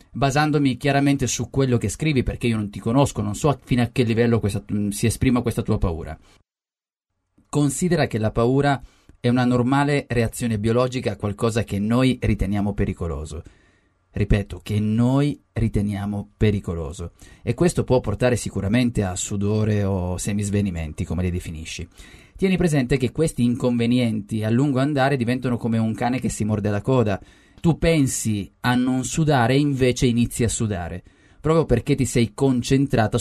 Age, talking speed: 30-49, 155 wpm